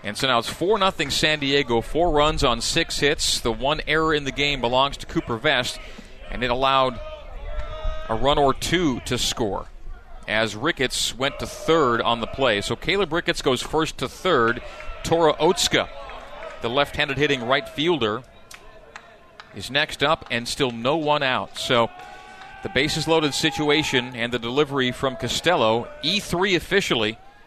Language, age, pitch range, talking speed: English, 40-59, 120-160 Hz, 160 wpm